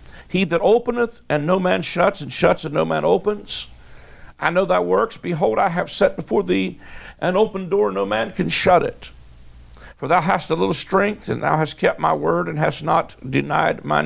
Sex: male